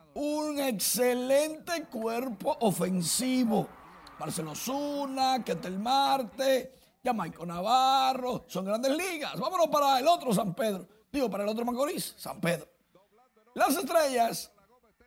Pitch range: 195-270 Hz